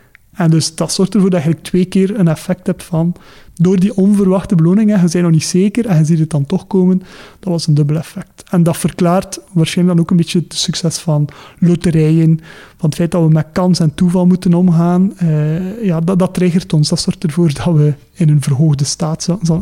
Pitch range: 160-185 Hz